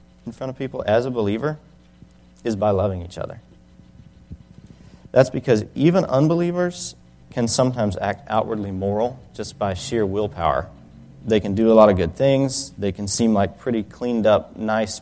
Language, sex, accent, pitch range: English, male, American, 90-120 Hz